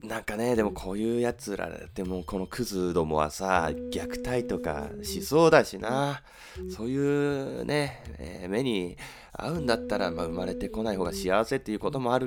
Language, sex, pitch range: Japanese, male, 110-175 Hz